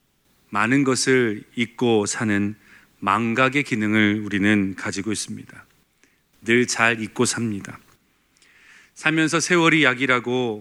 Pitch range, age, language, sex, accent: 110-155 Hz, 40-59, Korean, male, native